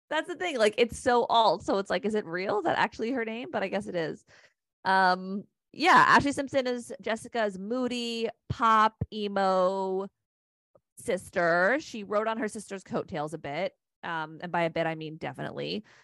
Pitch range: 170-220 Hz